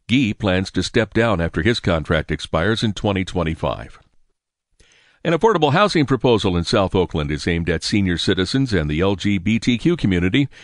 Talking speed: 150 wpm